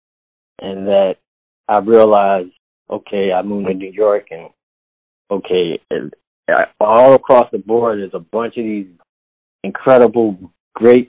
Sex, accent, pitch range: male, American, 95-120 Hz